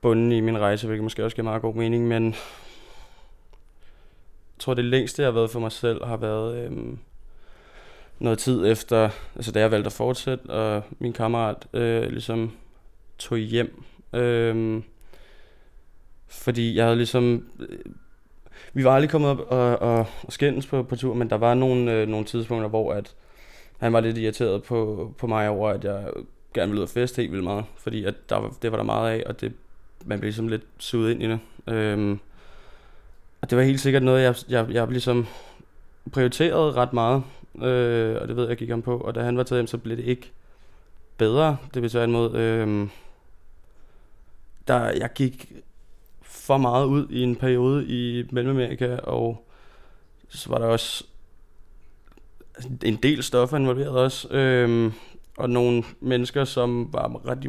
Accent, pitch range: native, 110-125 Hz